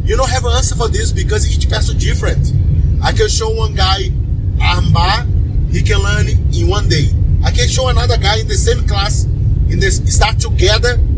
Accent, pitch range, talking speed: Brazilian, 85-95 Hz, 195 wpm